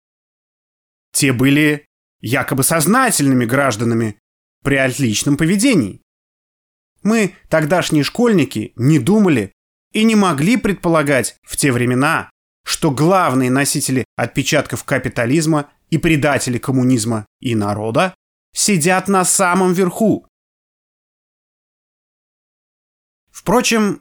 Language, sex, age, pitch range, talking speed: Russian, male, 20-39, 125-170 Hz, 85 wpm